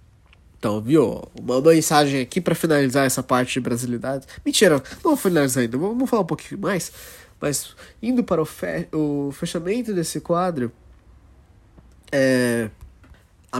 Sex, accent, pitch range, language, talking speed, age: male, Brazilian, 115-155 Hz, Portuguese, 130 wpm, 20-39